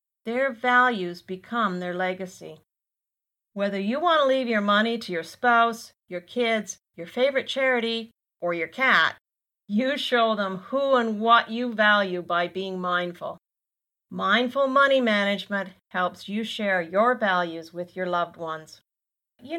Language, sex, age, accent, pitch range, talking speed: English, female, 40-59, American, 180-235 Hz, 145 wpm